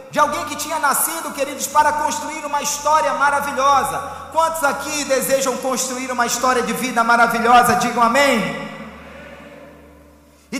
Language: Portuguese